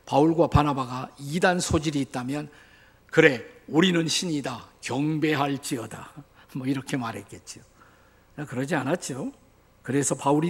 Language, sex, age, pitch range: Korean, male, 50-69, 130-180 Hz